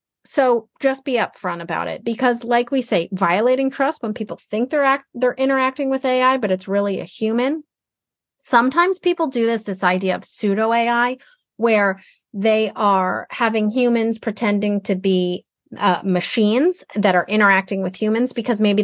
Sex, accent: female, American